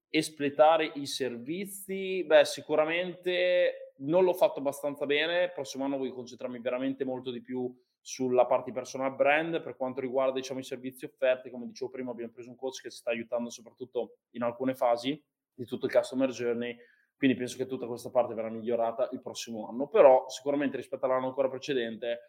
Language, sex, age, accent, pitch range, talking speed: Italian, male, 20-39, native, 120-155 Hz, 180 wpm